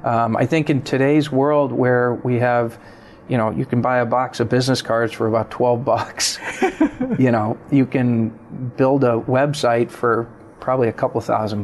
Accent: American